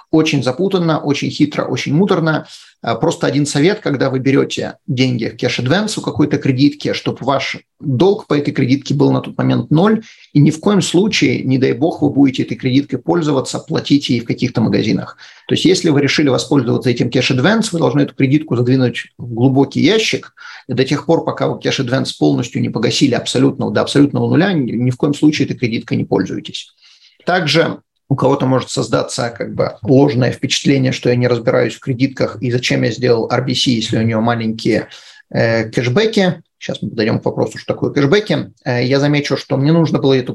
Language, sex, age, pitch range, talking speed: Russian, male, 30-49, 130-160 Hz, 190 wpm